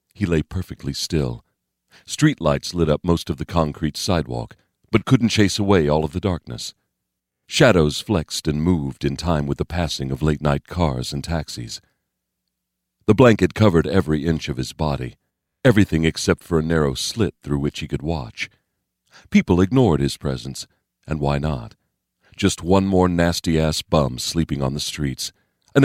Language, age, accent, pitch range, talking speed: English, 50-69, American, 70-90 Hz, 160 wpm